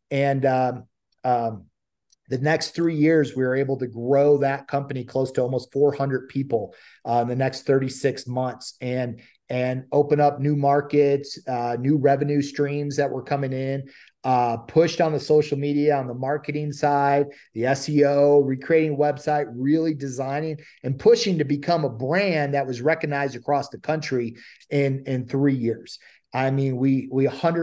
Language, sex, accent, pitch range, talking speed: English, male, American, 130-150 Hz, 165 wpm